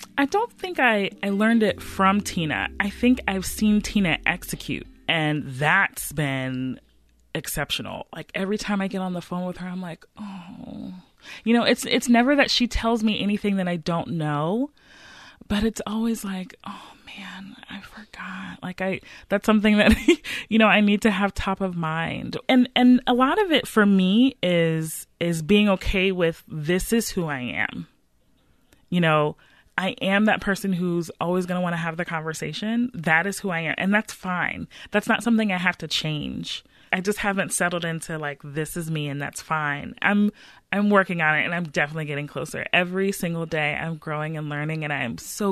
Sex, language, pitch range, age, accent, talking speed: female, English, 160-210 Hz, 30-49, American, 195 wpm